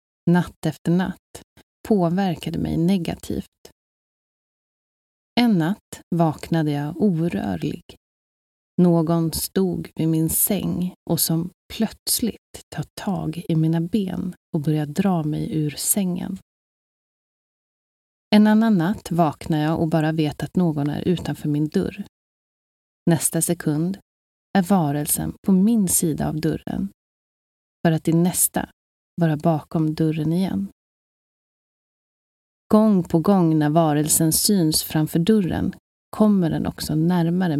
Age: 30-49